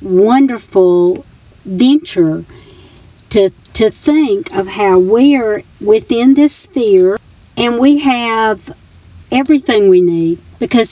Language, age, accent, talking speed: English, 50-69, American, 100 wpm